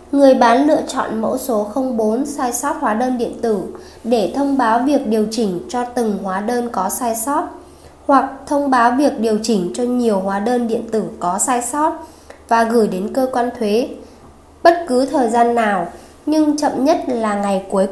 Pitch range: 220-270 Hz